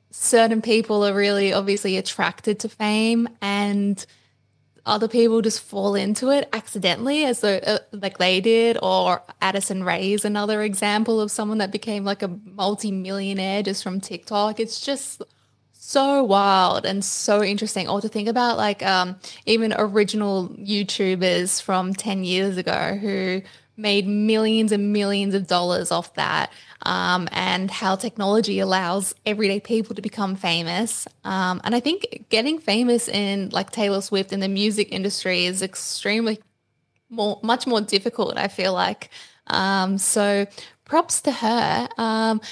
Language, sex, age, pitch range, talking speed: English, female, 10-29, 195-225 Hz, 145 wpm